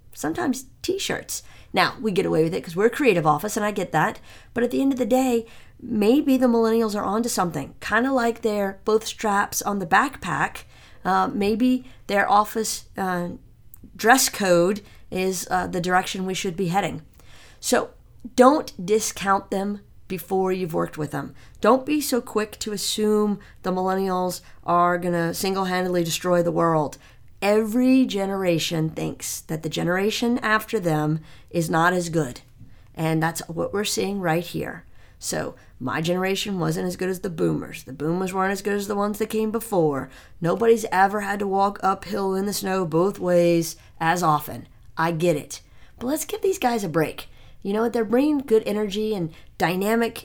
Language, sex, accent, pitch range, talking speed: English, female, American, 170-225 Hz, 175 wpm